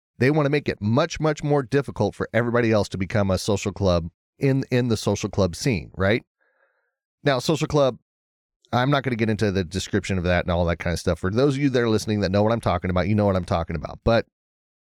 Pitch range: 100-135 Hz